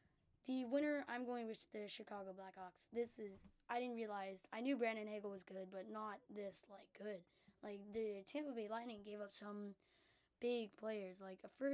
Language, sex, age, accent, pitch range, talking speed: English, female, 10-29, American, 200-240 Hz, 180 wpm